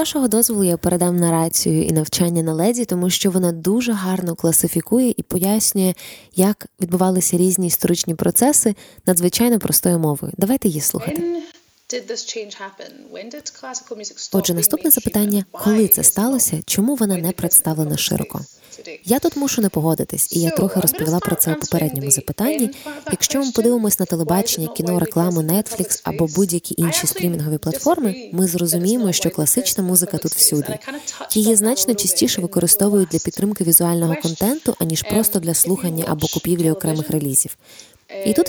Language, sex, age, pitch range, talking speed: Ukrainian, female, 20-39, 170-225 Hz, 145 wpm